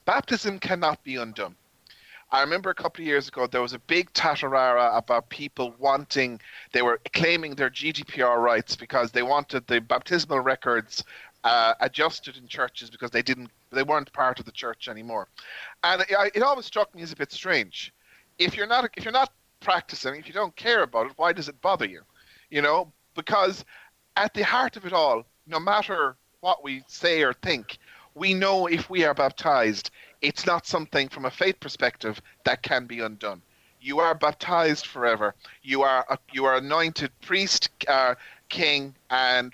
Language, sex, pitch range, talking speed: English, male, 125-170 Hz, 185 wpm